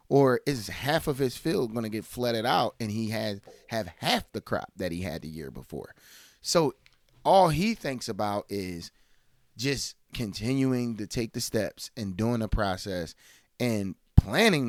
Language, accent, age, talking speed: English, American, 30-49, 170 wpm